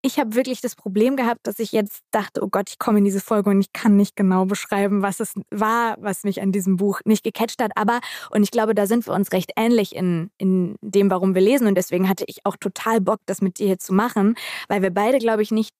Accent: German